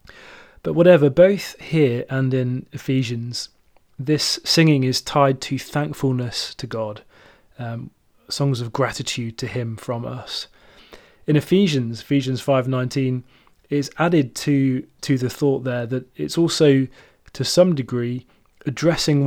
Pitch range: 125-150 Hz